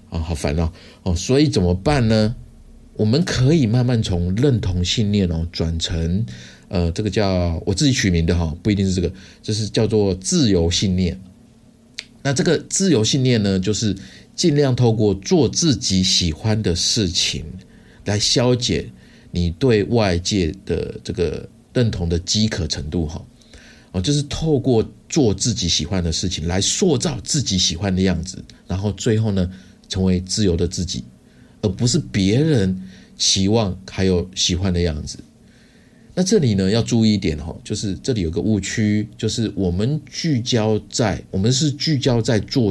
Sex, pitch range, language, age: male, 90-115 Hz, Chinese, 50-69